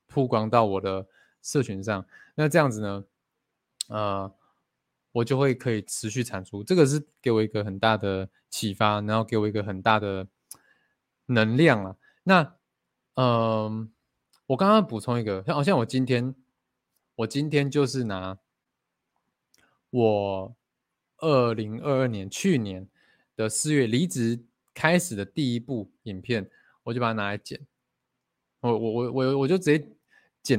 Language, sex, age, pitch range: Chinese, male, 20-39, 100-130 Hz